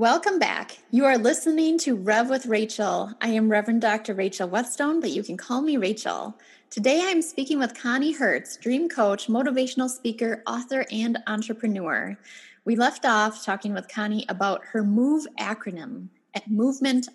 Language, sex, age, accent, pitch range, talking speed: English, female, 20-39, American, 195-250 Hz, 165 wpm